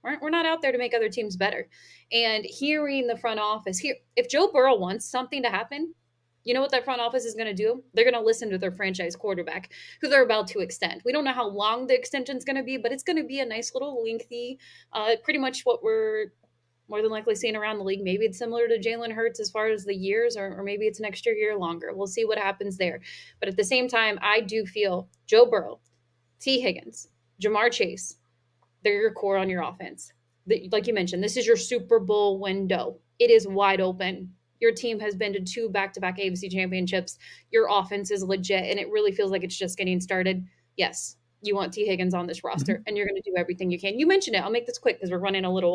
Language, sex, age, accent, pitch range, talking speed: English, female, 20-39, American, 190-255 Hz, 240 wpm